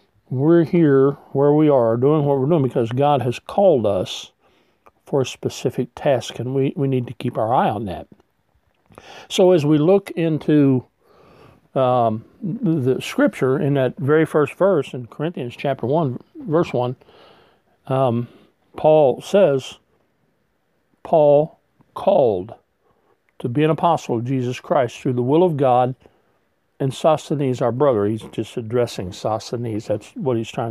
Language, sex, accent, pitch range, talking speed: English, male, American, 125-155 Hz, 150 wpm